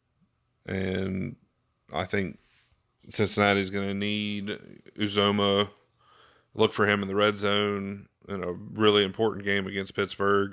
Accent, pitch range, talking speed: American, 95-105 Hz, 120 wpm